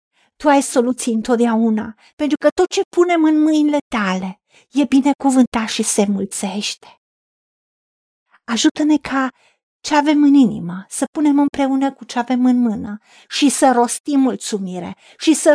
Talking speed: 145 wpm